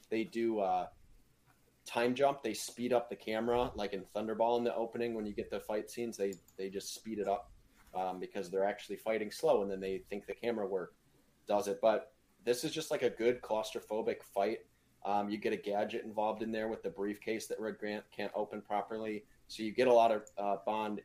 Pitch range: 100-120 Hz